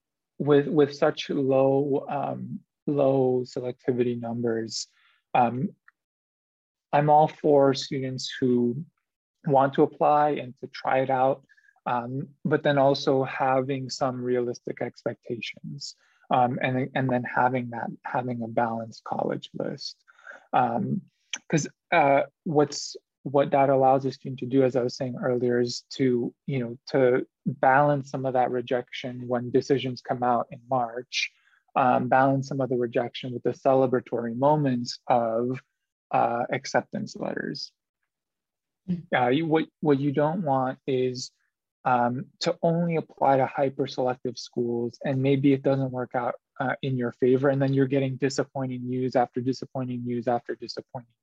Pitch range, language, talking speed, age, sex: 125-140 Hz, Romanian, 145 wpm, 20-39, male